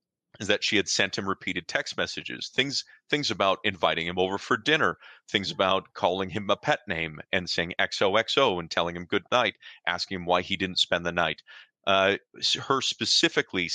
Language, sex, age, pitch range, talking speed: English, male, 30-49, 90-110 Hz, 190 wpm